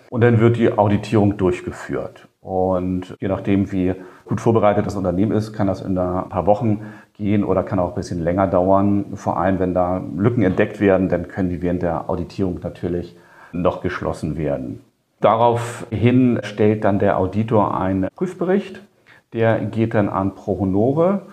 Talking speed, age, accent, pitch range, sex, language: 165 wpm, 40-59, German, 95-115 Hz, male, German